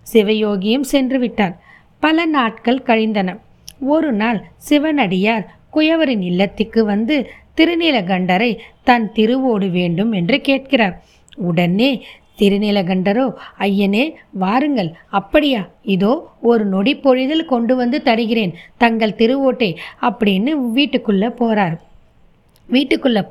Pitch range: 200-255 Hz